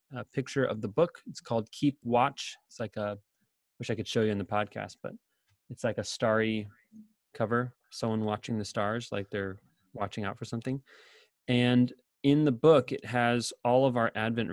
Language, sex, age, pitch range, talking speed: English, male, 20-39, 110-130 Hz, 190 wpm